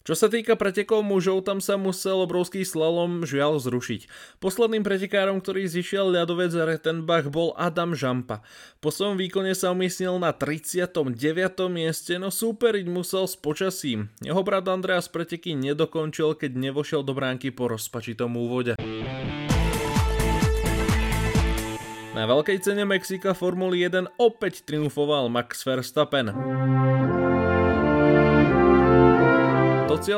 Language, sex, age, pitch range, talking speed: Slovak, male, 20-39, 125-180 Hz, 115 wpm